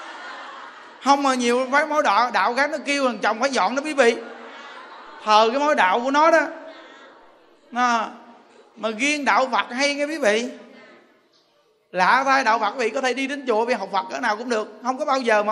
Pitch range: 205-270 Hz